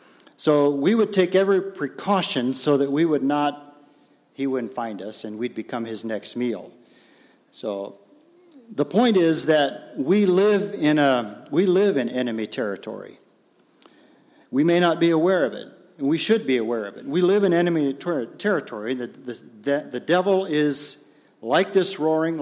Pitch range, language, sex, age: 125-165 Hz, English, male, 50-69